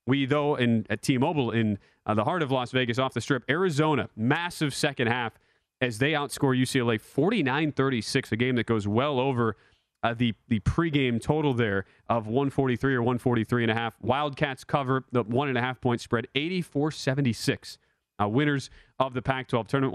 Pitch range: 125-150 Hz